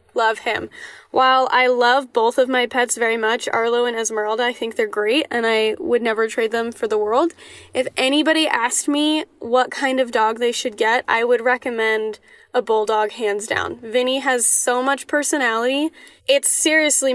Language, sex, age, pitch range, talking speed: English, female, 10-29, 230-300 Hz, 180 wpm